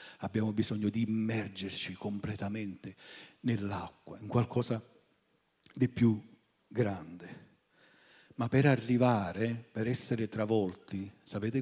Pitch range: 105-140 Hz